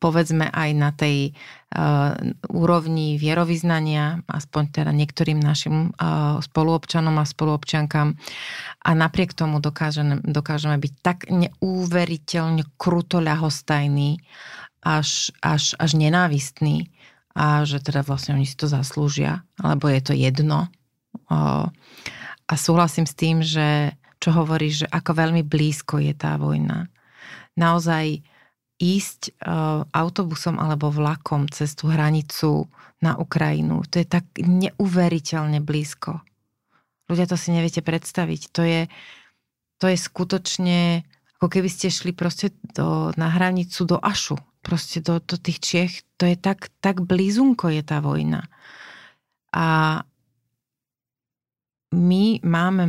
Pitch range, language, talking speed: 150-175 Hz, Slovak, 120 wpm